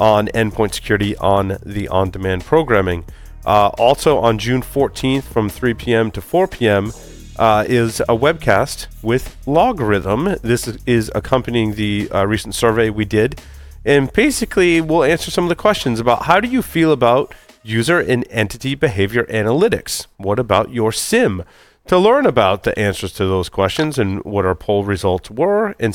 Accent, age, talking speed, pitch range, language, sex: American, 30-49, 165 wpm, 100-135 Hz, English, male